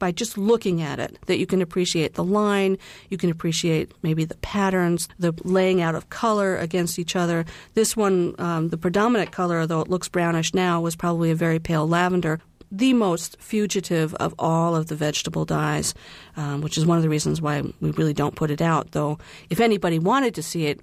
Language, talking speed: English, 205 wpm